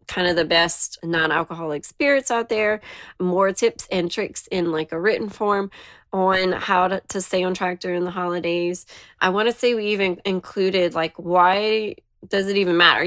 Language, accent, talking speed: English, American, 185 wpm